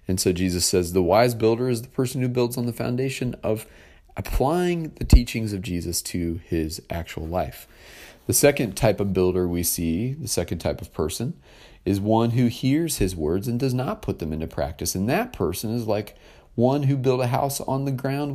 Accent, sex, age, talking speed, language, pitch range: American, male, 40-59, 205 wpm, English, 85-115 Hz